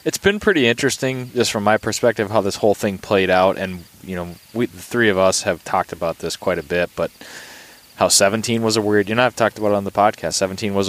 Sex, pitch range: male, 90-105 Hz